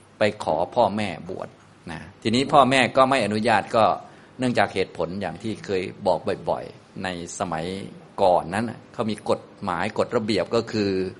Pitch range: 95-120 Hz